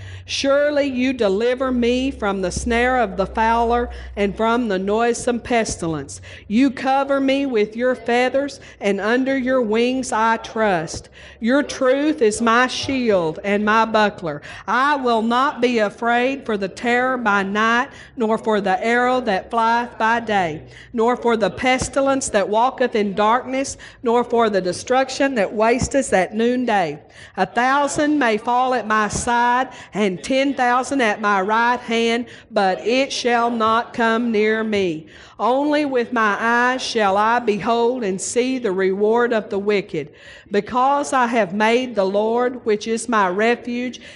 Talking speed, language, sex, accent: 155 wpm, English, female, American